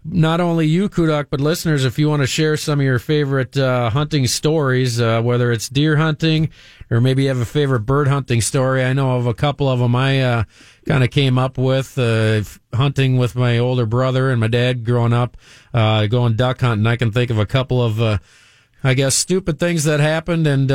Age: 40-59